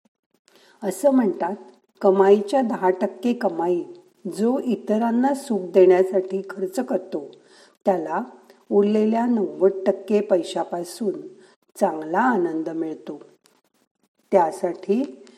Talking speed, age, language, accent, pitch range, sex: 80 wpm, 50-69, Marathi, native, 175-240 Hz, female